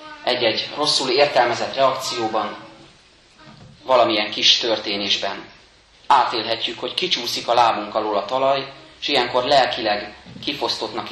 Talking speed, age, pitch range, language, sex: 105 wpm, 30-49, 110-155 Hz, Hungarian, male